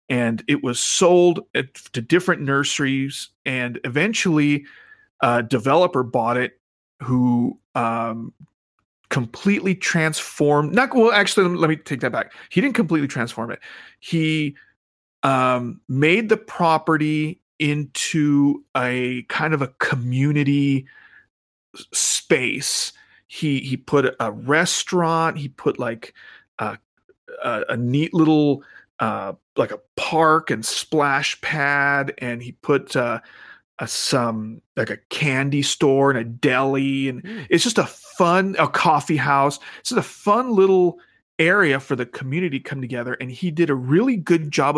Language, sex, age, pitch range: English, male, 40-59, 125-160 Hz